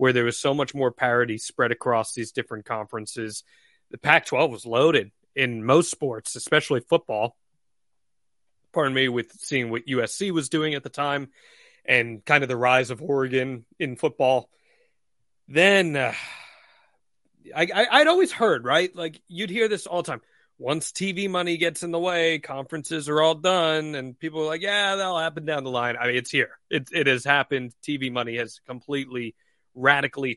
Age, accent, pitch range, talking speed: 30-49, American, 125-170 Hz, 175 wpm